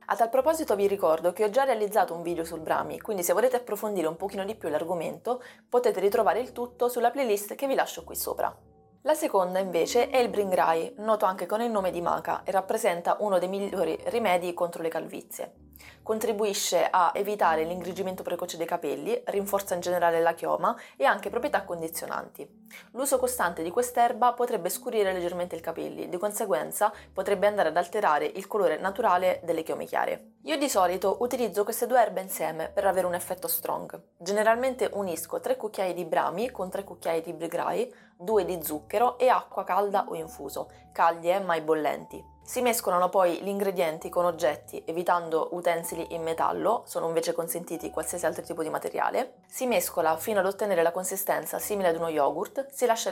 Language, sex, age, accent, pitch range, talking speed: Italian, female, 20-39, native, 170-220 Hz, 180 wpm